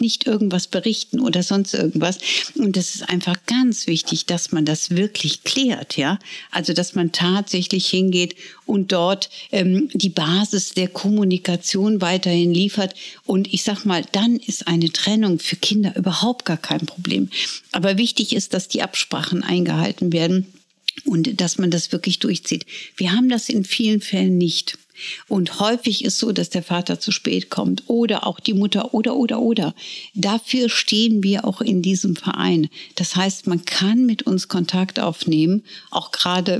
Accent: German